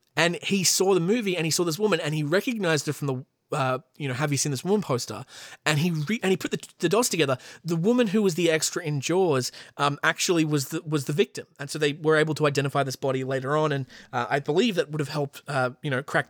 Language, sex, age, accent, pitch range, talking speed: English, male, 20-39, Australian, 135-165 Hz, 270 wpm